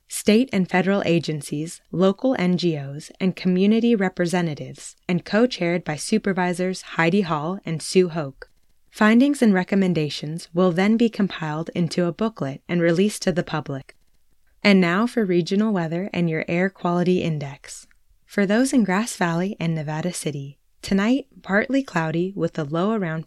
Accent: American